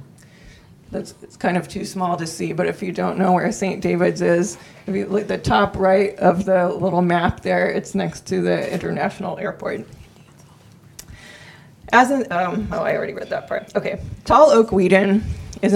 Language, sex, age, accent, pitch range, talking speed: English, female, 20-39, American, 180-200 Hz, 190 wpm